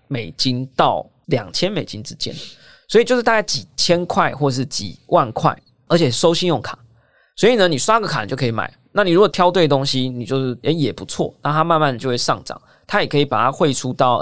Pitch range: 120-165 Hz